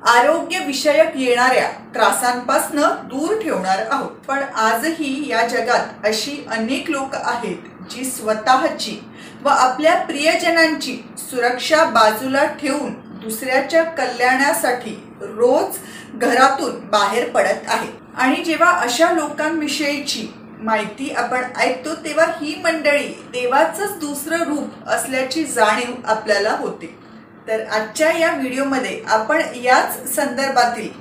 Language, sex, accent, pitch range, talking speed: Marathi, female, native, 235-315 Hz, 105 wpm